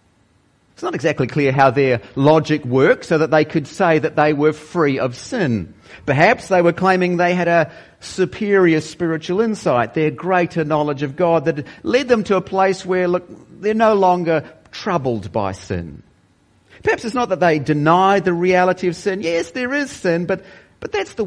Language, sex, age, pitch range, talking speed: English, male, 40-59, 115-180 Hz, 185 wpm